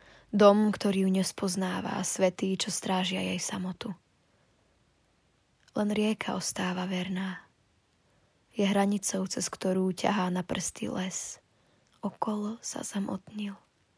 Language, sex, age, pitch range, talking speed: Slovak, female, 20-39, 185-210 Hz, 105 wpm